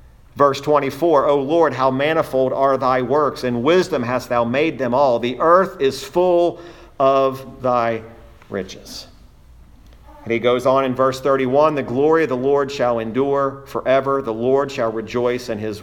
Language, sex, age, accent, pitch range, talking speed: English, male, 50-69, American, 115-140 Hz, 165 wpm